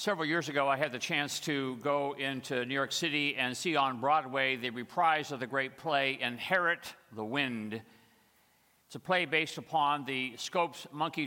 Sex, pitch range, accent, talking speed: male, 130-165 Hz, American, 180 wpm